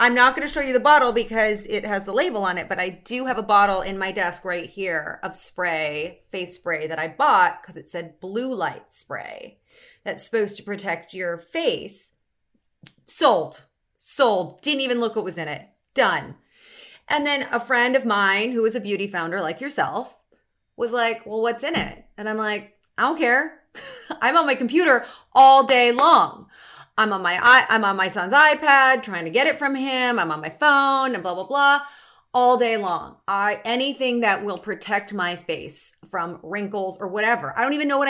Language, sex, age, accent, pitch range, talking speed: English, female, 30-49, American, 195-255 Hz, 200 wpm